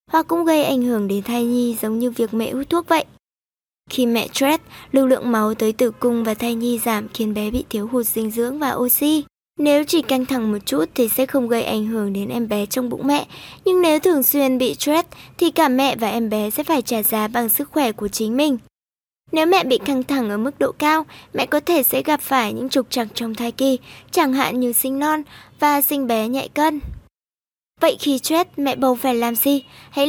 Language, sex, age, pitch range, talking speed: Vietnamese, male, 20-39, 235-290 Hz, 235 wpm